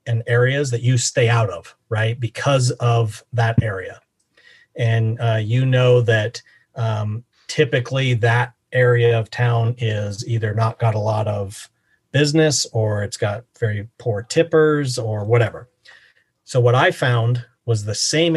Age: 40-59